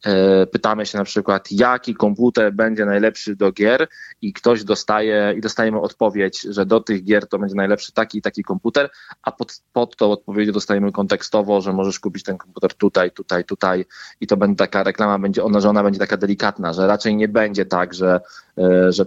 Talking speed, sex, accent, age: 190 wpm, male, native, 20-39